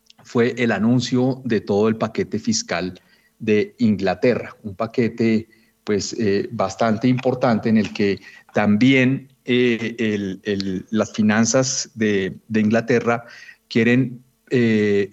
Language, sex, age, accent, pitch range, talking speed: Spanish, male, 40-59, Colombian, 105-125 Hz, 105 wpm